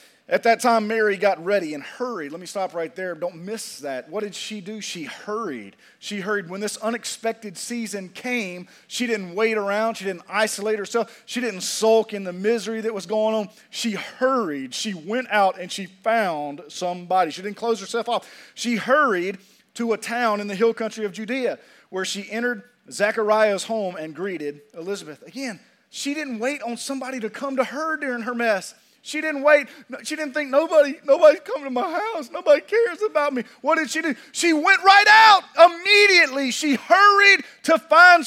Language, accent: English, American